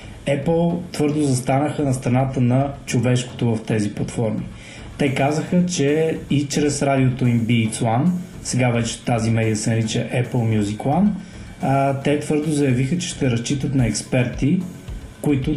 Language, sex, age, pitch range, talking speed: Bulgarian, male, 20-39, 120-150 Hz, 145 wpm